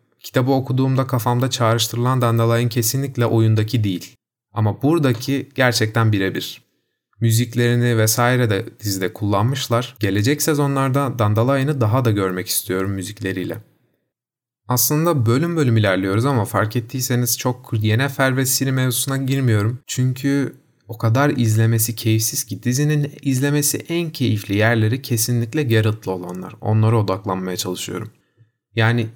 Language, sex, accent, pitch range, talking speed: Turkish, male, native, 110-135 Hz, 115 wpm